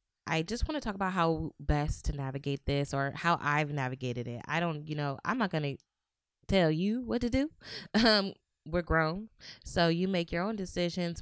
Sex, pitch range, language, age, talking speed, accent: female, 135-170 Hz, English, 20-39, 205 wpm, American